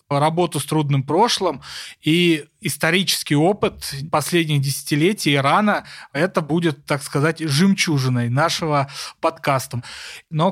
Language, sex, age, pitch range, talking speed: Russian, male, 20-39, 150-190 Hz, 105 wpm